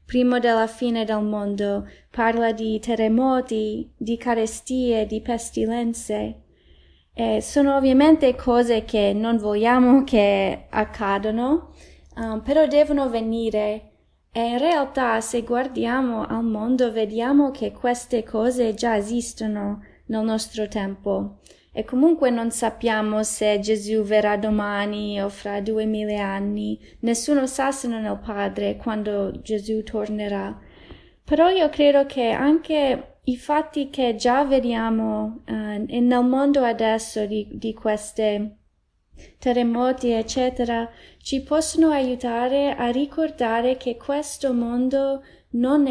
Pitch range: 215-255 Hz